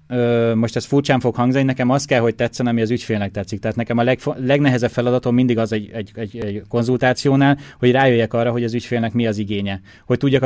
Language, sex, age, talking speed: Hungarian, male, 20-39, 210 wpm